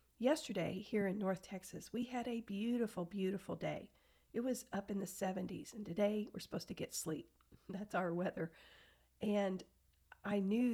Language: English